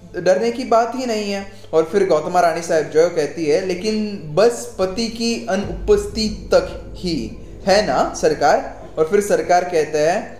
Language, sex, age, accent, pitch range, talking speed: Hindi, male, 20-39, native, 175-235 Hz, 165 wpm